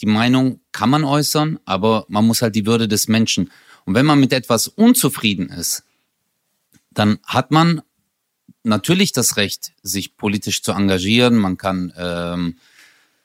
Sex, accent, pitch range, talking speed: male, German, 105-140 Hz, 150 wpm